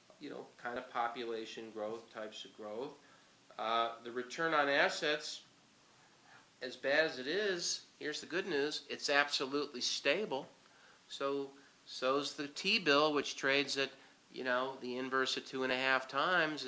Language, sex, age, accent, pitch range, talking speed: English, male, 50-69, American, 120-140 Hz, 155 wpm